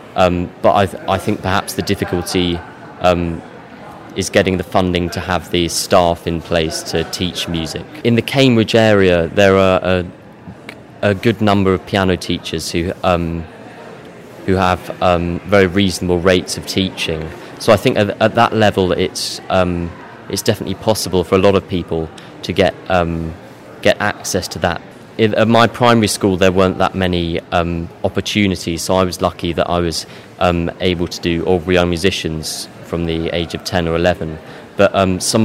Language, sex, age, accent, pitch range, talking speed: English, male, 20-39, British, 85-100 Hz, 180 wpm